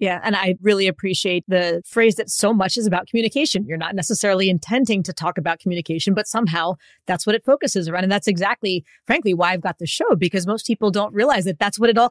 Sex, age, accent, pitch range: female, 30-49, American, 175-220 Hz